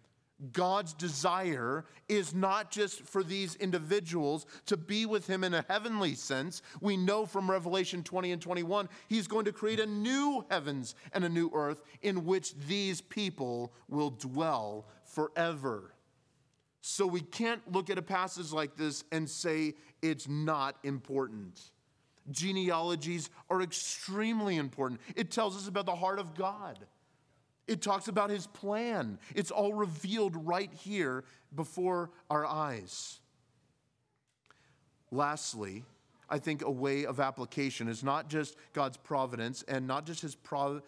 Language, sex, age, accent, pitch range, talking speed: English, male, 30-49, American, 135-185 Hz, 140 wpm